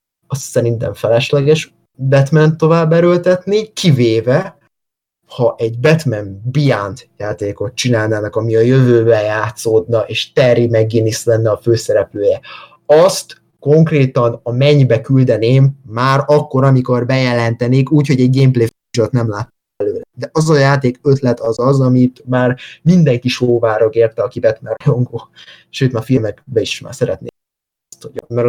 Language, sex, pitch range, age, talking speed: Hungarian, male, 115-135 Hz, 20-39, 125 wpm